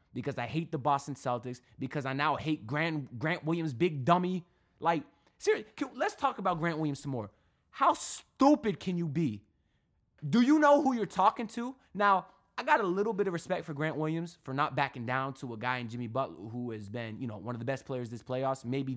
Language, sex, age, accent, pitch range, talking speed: English, male, 20-39, American, 130-180 Hz, 225 wpm